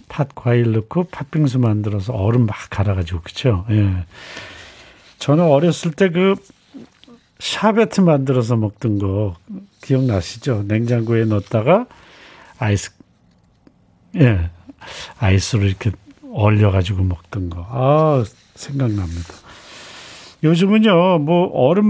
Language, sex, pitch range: Korean, male, 105-160 Hz